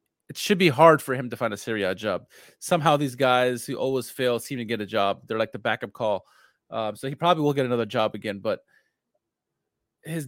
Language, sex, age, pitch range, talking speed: English, male, 30-49, 120-150 Hz, 220 wpm